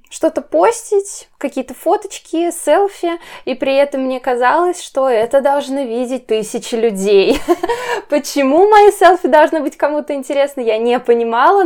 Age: 20-39